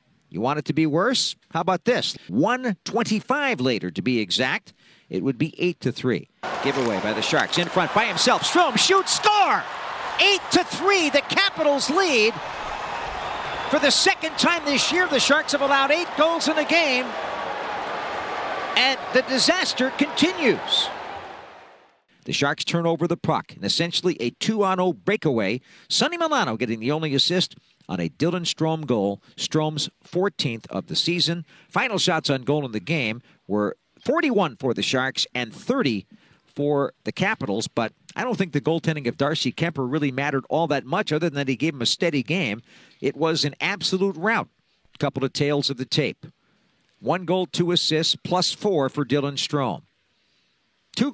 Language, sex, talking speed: English, male, 170 wpm